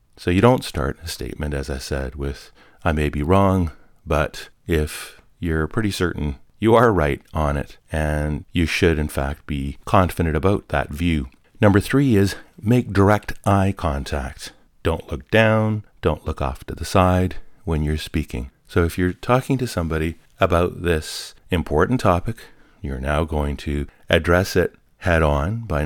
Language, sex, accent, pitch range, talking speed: English, male, American, 75-100 Hz, 165 wpm